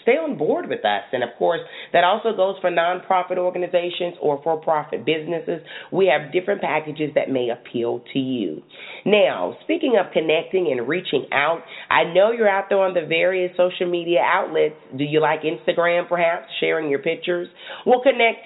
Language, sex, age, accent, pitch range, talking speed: English, female, 40-59, American, 150-215 Hz, 180 wpm